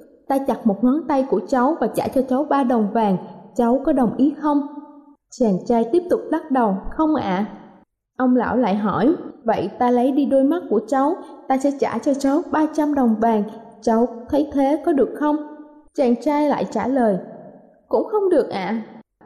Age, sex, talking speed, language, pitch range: 20-39, female, 200 wpm, Vietnamese, 230-290 Hz